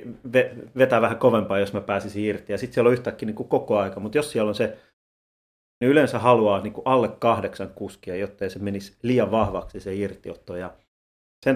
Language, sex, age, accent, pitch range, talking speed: Finnish, male, 30-49, native, 100-120 Hz, 195 wpm